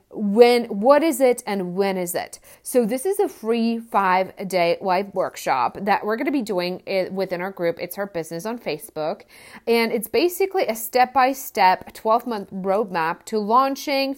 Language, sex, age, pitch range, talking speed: English, female, 30-49, 185-235 Hz, 165 wpm